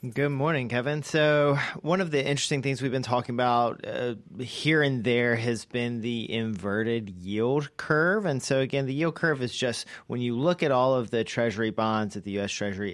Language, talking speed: English, 205 wpm